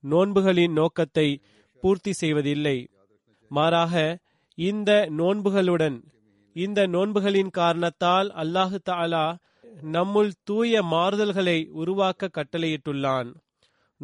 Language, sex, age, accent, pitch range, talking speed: Tamil, male, 30-49, native, 150-195 Hz, 60 wpm